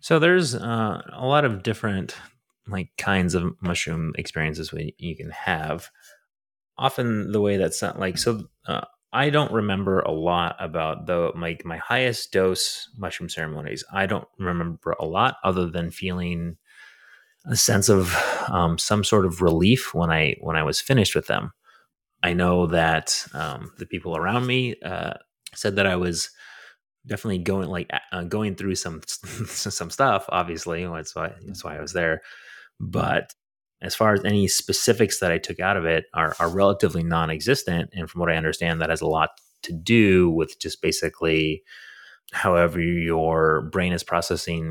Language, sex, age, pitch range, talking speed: English, male, 30-49, 80-100 Hz, 170 wpm